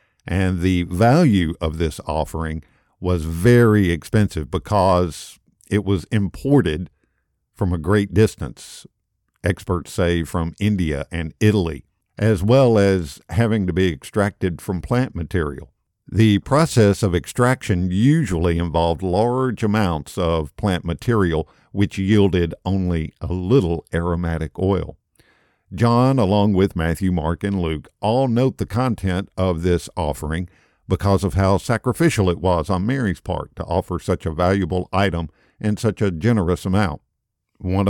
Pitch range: 85-105 Hz